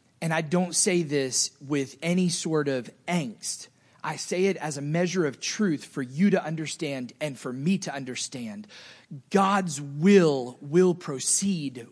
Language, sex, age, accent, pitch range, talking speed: English, male, 30-49, American, 135-185 Hz, 155 wpm